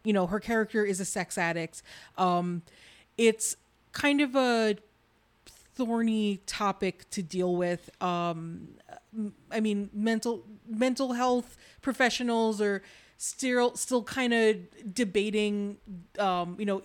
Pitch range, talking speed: 185-230 Hz, 120 wpm